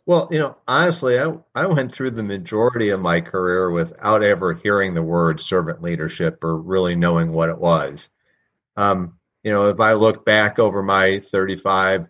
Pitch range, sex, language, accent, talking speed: 95-110 Hz, male, English, American, 180 wpm